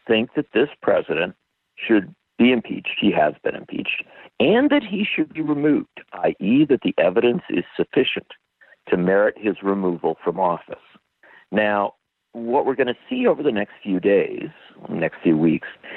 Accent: American